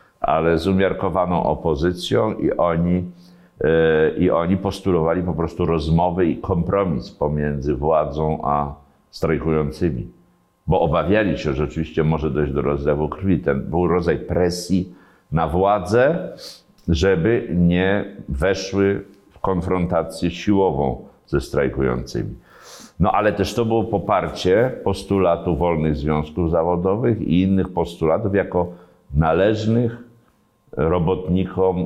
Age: 50-69